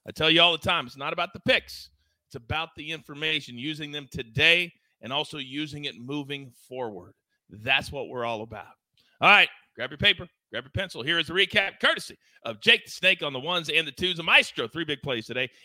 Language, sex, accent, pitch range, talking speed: English, male, American, 145-180 Hz, 220 wpm